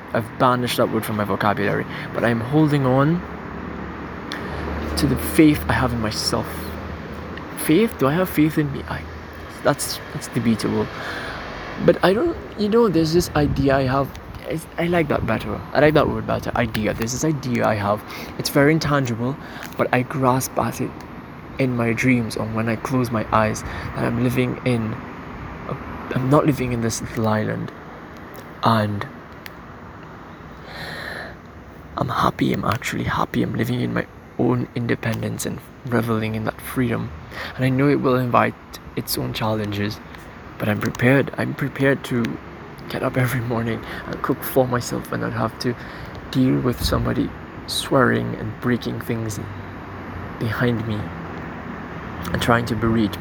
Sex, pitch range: male, 100-130 Hz